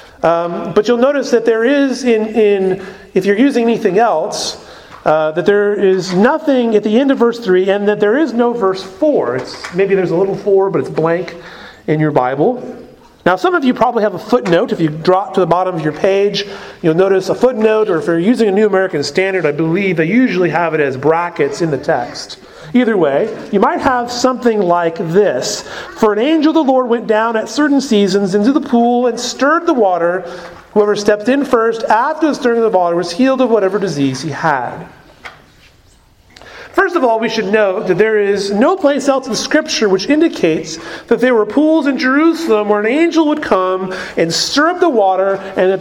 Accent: American